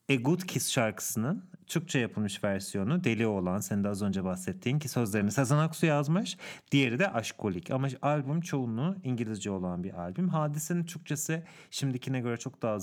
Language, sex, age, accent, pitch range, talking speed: English, male, 40-59, Turkish, 110-165 Hz, 160 wpm